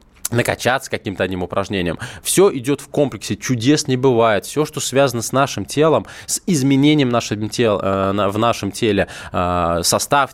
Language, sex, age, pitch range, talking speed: Russian, male, 20-39, 110-140 Hz, 135 wpm